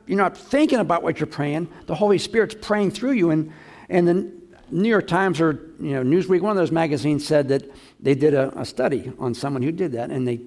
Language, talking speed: English, 235 wpm